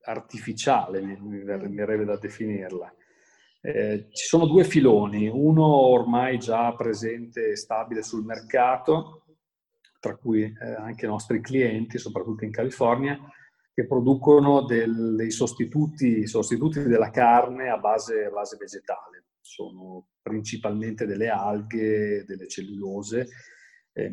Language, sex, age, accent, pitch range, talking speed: Italian, male, 40-59, native, 105-135 Hz, 120 wpm